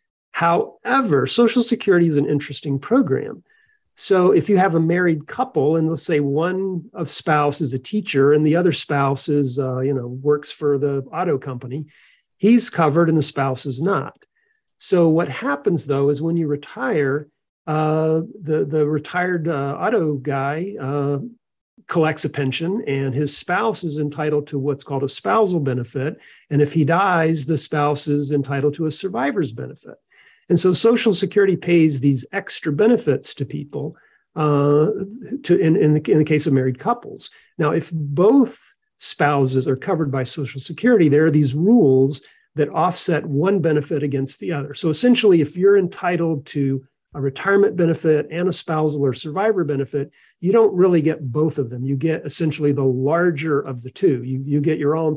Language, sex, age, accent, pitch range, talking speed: English, male, 50-69, American, 140-175 Hz, 175 wpm